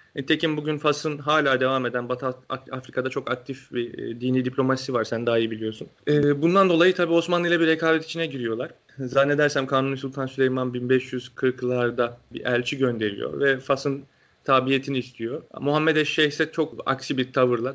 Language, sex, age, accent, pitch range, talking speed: Turkish, male, 30-49, native, 125-150 Hz, 150 wpm